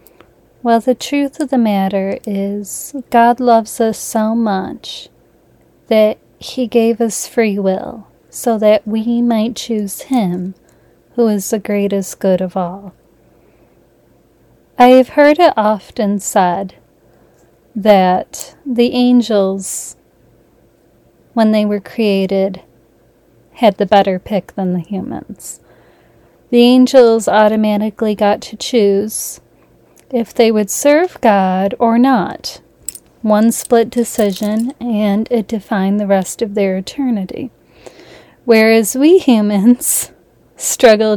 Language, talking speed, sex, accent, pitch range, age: English, 115 wpm, female, American, 195-235 Hz, 30-49